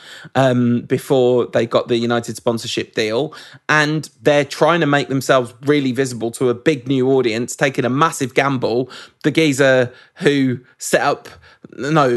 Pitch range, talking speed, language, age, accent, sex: 125-155 Hz, 155 wpm, English, 20-39, British, male